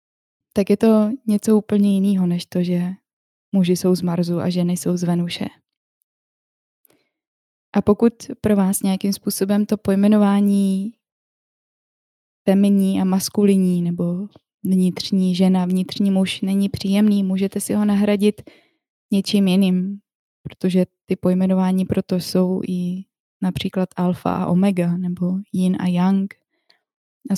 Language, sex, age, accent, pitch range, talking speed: Czech, female, 20-39, native, 180-205 Hz, 125 wpm